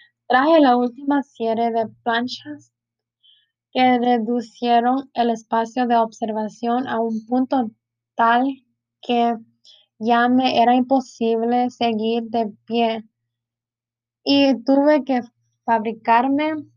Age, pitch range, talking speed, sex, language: 10-29, 220-255 Hz, 100 wpm, female, Spanish